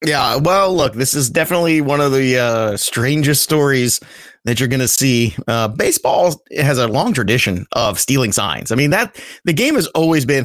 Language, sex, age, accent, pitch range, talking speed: English, male, 30-49, American, 130-175 Hz, 195 wpm